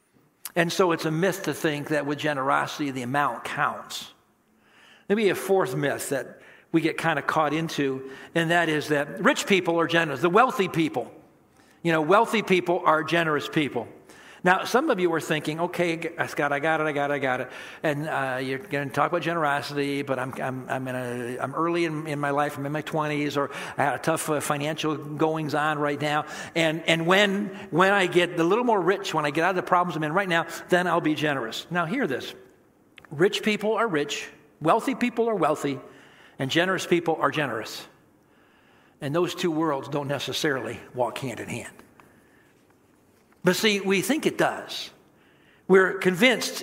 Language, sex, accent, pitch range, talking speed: English, male, American, 145-175 Hz, 200 wpm